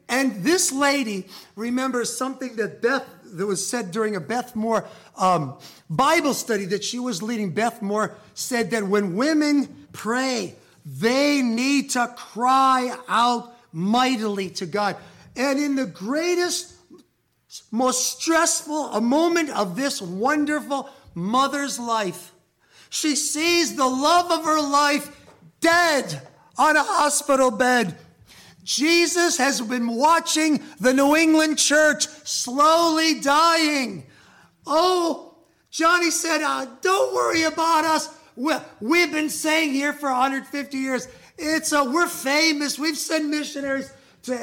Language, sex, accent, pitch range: English, male, American, 235-305 Hz